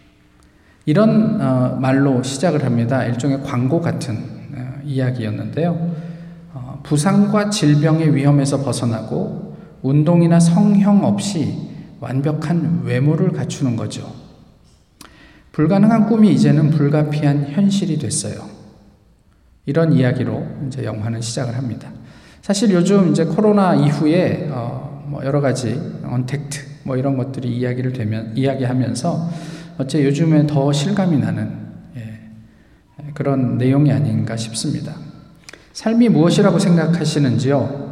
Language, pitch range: Korean, 130-170 Hz